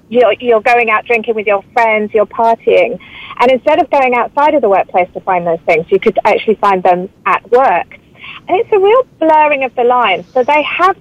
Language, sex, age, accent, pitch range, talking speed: English, female, 40-59, British, 205-290 Hz, 215 wpm